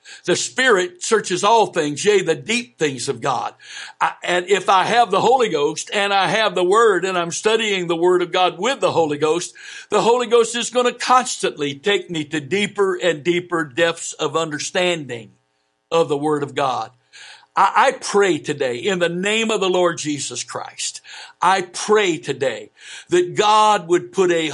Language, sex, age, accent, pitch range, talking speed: English, male, 60-79, American, 165-220 Hz, 185 wpm